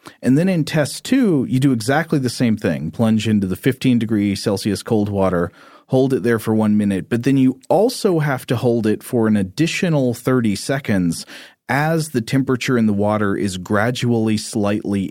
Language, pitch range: English, 105-135 Hz